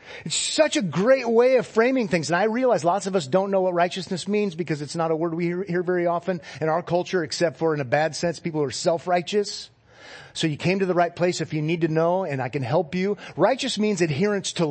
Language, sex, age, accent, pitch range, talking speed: English, male, 40-59, American, 125-180 Hz, 250 wpm